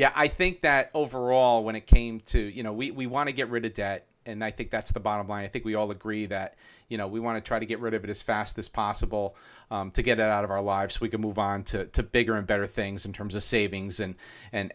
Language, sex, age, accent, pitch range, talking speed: English, male, 40-59, American, 105-130 Hz, 295 wpm